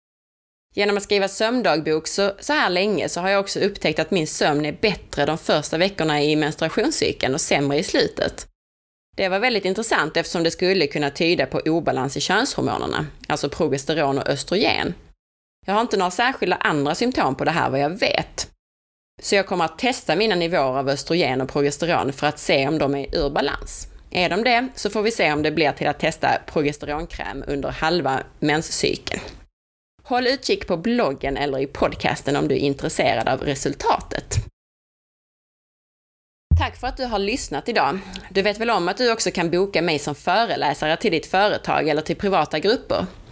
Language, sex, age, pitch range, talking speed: Swedish, female, 20-39, 145-200 Hz, 185 wpm